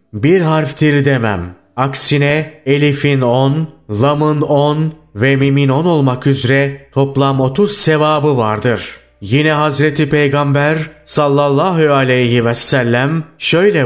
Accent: native